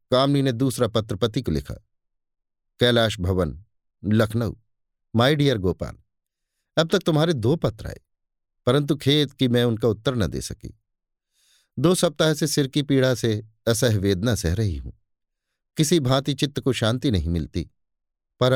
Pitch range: 105-135 Hz